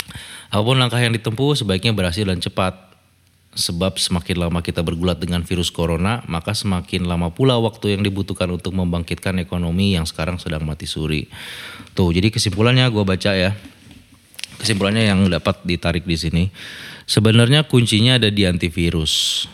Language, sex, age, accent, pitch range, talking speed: Indonesian, male, 20-39, native, 85-110 Hz, 145 wpm